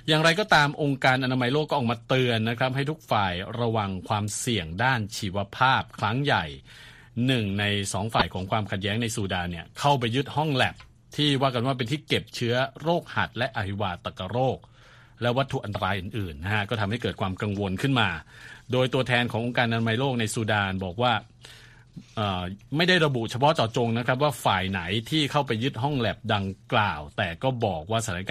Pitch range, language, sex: 100-130 Hz, Thai, male